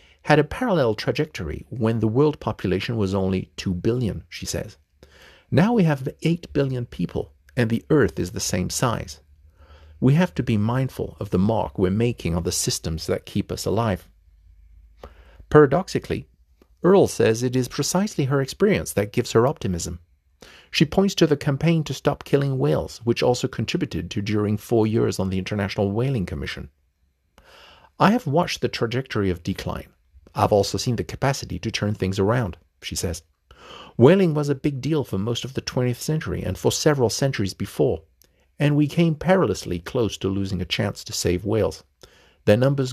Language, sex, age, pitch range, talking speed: English, male, 50-69, 90-130 Hz, 175 wpm